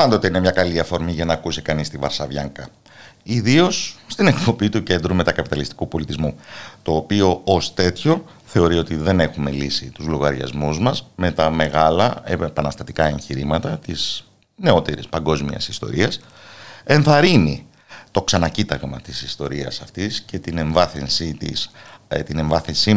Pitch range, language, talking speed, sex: 80-120 Hz, Greek, 125 wpm, male